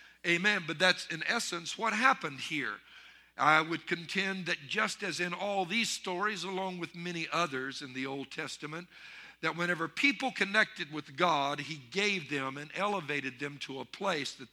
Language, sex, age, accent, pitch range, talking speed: English, male, 50-69, American, 145-200 Hz, 175 wpm